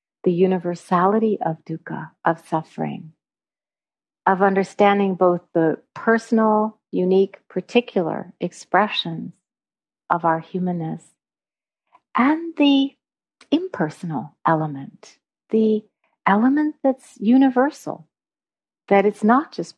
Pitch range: 175-225 Hz